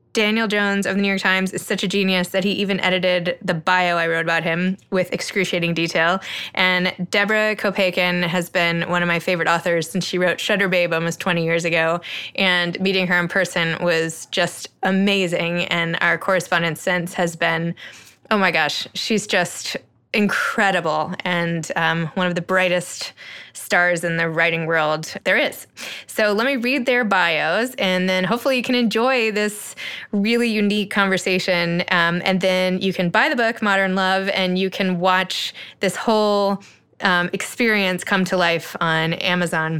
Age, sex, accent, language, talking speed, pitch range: 20-39, female, American, English, 175 wpm, 175-205 Hz